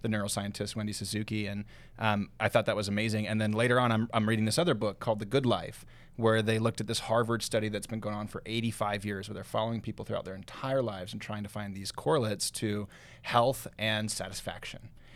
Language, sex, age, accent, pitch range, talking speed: English, male, 30-49, American, 105-125 Hz, 225 wpm